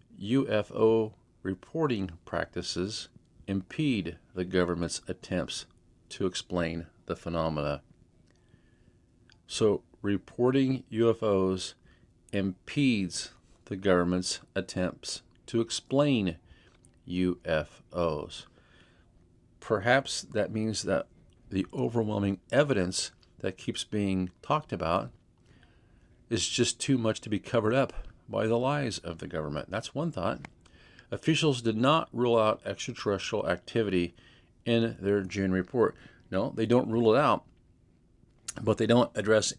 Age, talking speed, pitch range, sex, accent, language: 50-69, 110 wpm, 90-115 Hz, male, American, English